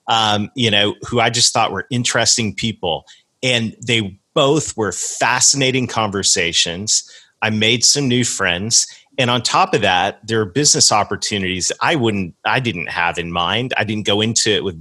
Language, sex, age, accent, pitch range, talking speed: English, male, 40-59, American, 90-115 Hz, 170 wpm